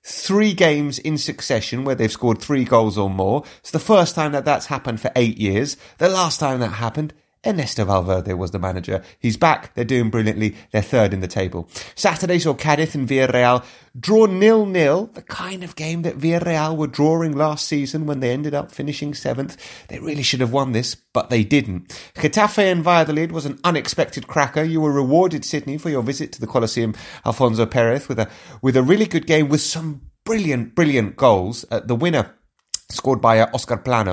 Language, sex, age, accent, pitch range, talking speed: English, male, 30-49, British, 105-150 Hz, 195 wpm